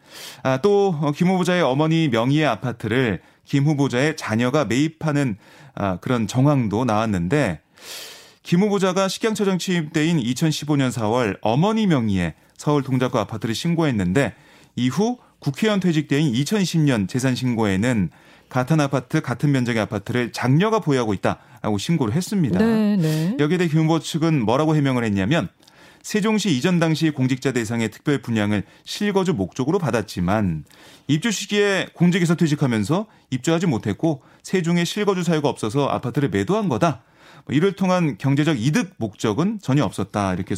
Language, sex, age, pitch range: Korean, male, 30-49, 125-175 Hz